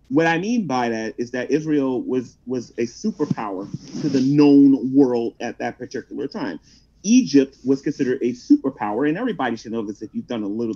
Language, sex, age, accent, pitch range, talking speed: English, male, 30-49, American, 120-165 Hz, 195 wpm